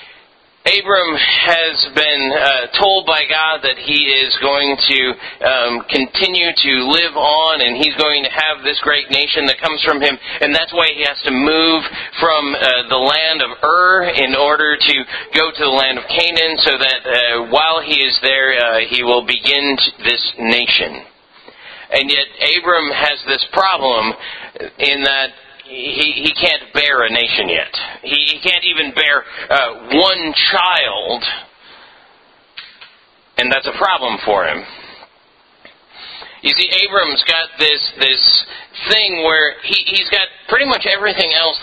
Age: 40-59